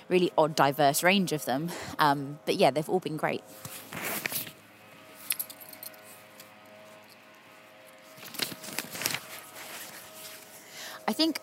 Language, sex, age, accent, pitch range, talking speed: English, female, 20-39, British, 155-210 Hz, 80 wpm